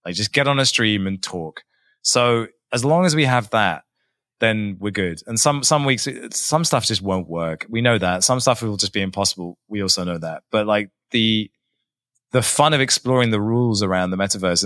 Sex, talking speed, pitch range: male, 215 wpm, 100-125 Hz